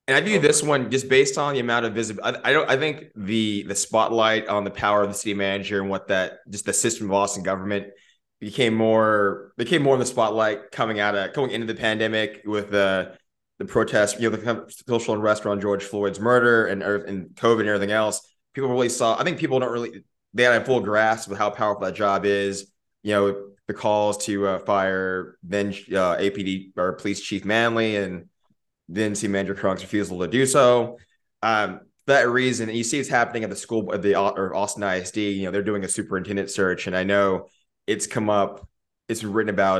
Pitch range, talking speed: 100-110 Hz, 220 wpm